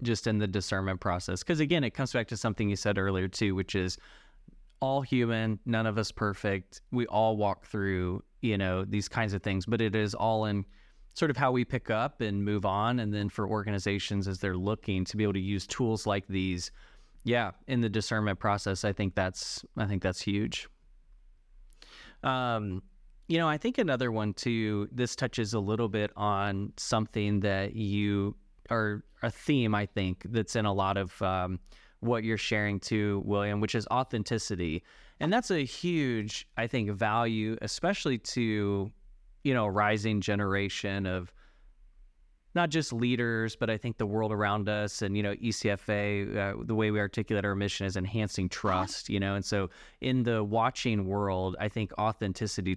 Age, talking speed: 20-39, 185 wpm